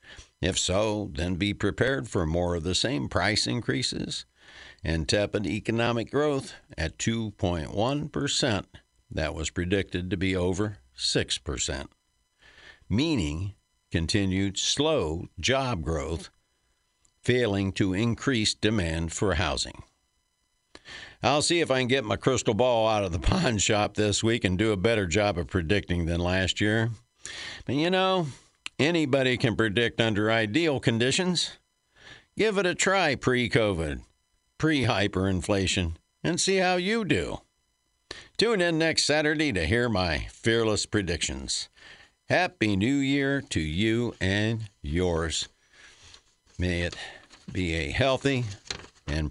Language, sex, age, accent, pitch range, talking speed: English, male, 60-79, American, 90-125 Hz, 125 wpm